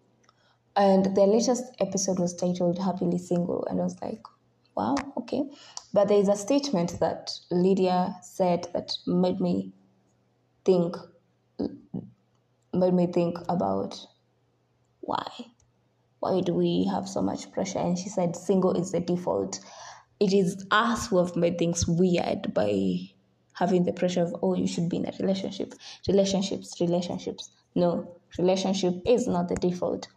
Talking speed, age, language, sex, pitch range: 145 wpm, 20-39, English, female, 175-195 Hz